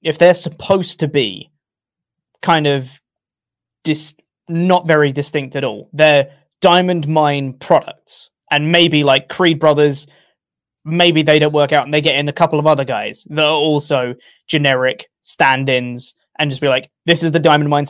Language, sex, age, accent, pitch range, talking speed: English, male, 20-39, British, 135-160 Hz, 170 wpm